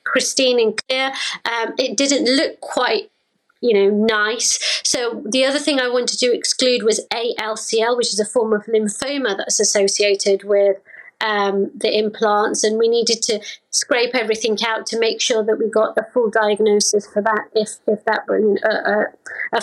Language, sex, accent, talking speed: English, female, British, 175 wpm